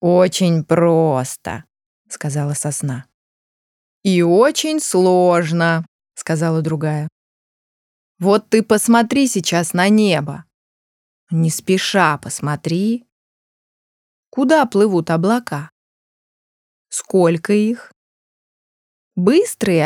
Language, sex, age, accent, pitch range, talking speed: Russian, female, 20-39, native, 160-235 Hz, 75 wpm